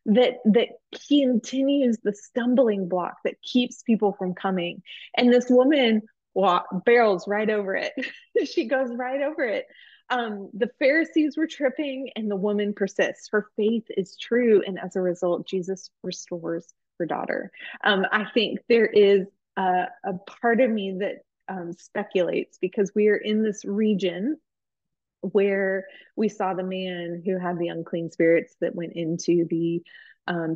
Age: 20-39